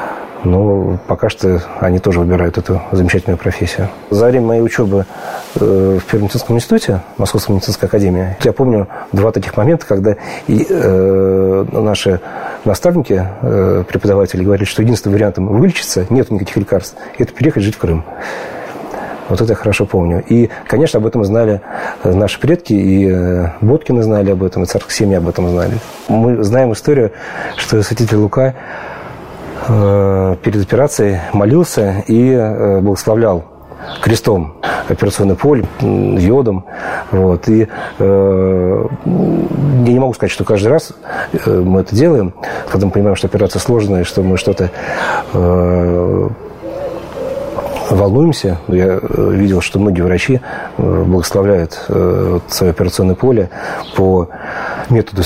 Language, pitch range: Russian, 95-115 Hz